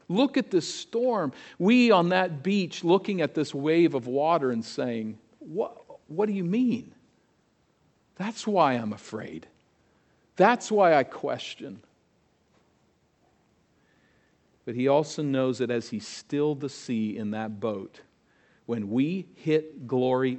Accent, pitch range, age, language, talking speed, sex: American, 115-155 Hz, 50-69, English, 135 wpm, male